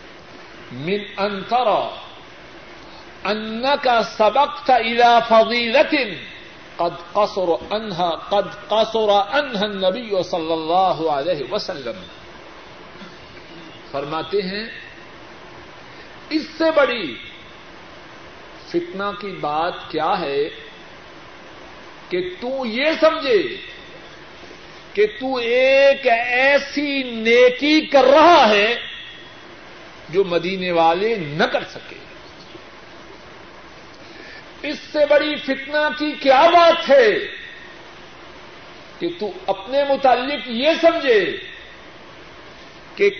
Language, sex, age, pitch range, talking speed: Urdu, male, 50-69, 195-295 Hz, 80 wpm